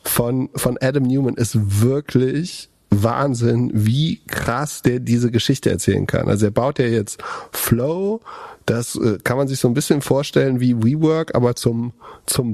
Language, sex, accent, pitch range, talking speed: German, male, German, 115-135 Hz, 160 wpm